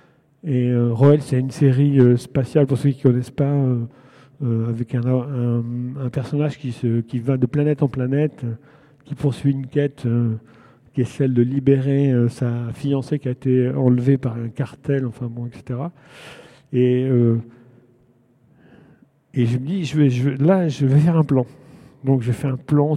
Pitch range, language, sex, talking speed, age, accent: 125-145 Hz, French, male, 195 wpm, 50-69, French